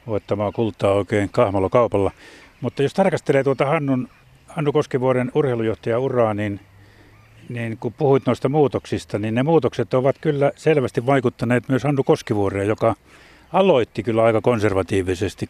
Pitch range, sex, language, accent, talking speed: 110-140 Hz, male, Finnish, native, 130 wpm